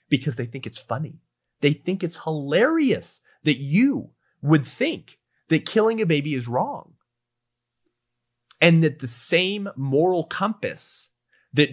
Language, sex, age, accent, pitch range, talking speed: English, male, 30-49, American, 115-155 Hz, 135 wpm